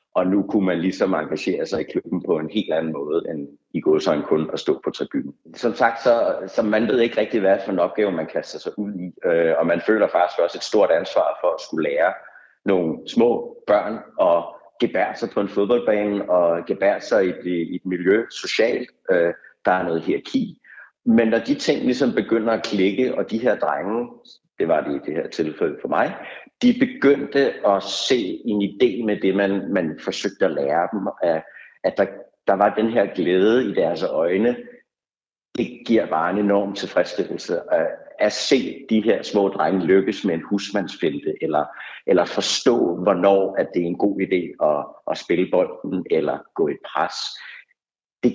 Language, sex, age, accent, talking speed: Danish, male, 60-79, native, 190 wpm